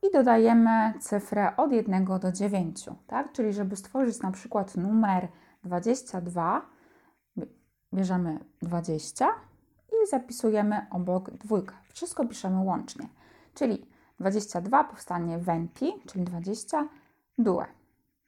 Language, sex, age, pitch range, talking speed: Polish, female, 20-39, 185-255 Hz, 100 wpm